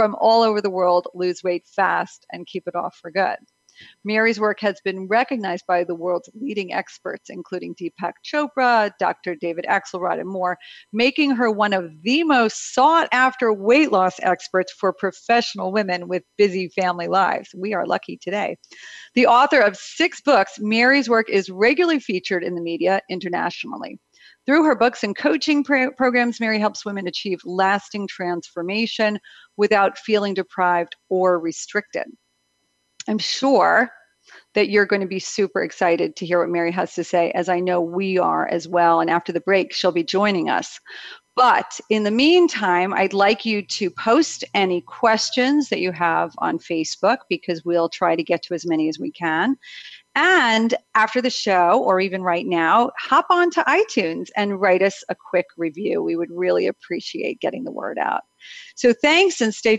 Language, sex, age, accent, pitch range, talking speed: English, female, 40-59, American, 180-230 Hz, 175 wpm